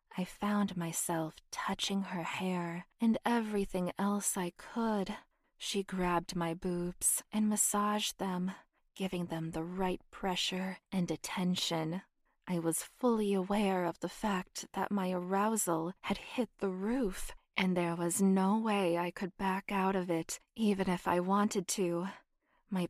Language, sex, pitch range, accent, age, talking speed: English, female, 175-205 Hz, American, 20-39, 145 wpm